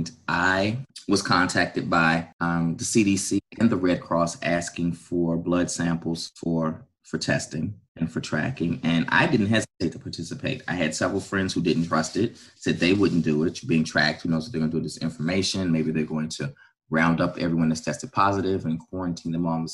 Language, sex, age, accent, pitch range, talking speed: English, male, 30-49, American, 80-95 Hz, 205 wpm